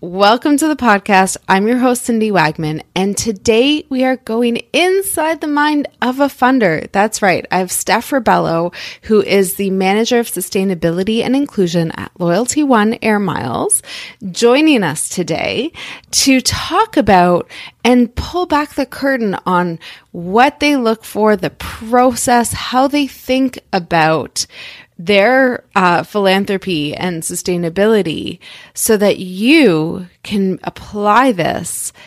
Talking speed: 135 wpm